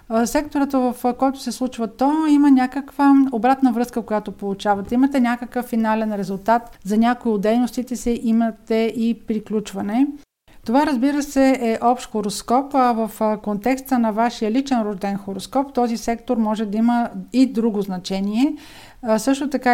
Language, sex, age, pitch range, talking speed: Bulgarian, female, 50-69, 215-255 Hz, 145 wpm